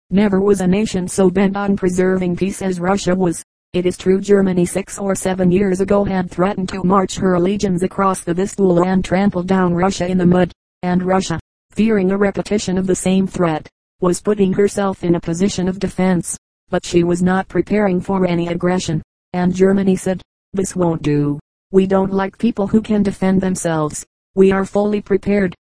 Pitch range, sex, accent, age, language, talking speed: 180-195 Hz, female, American, 40-59, English, 185 wpm